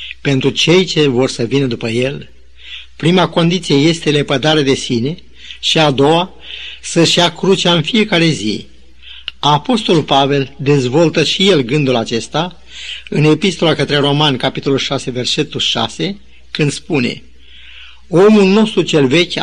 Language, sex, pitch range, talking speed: Romanian, male, 130-170 Hz, 135 wpm